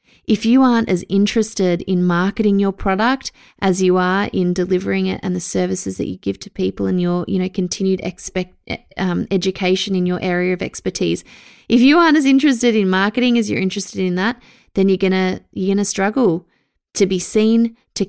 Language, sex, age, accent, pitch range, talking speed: English, female, 20-39, Australian, 185-230 Hz, 190 wpm